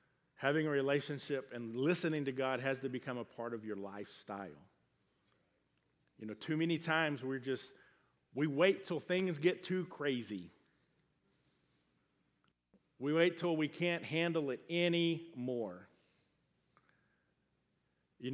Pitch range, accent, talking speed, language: 130-180 Hz, American, 125 wpm, English